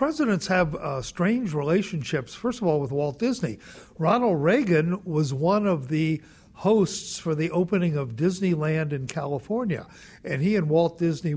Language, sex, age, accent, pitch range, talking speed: English, male, 60-79, American, 140-170 Hz, 160 wpm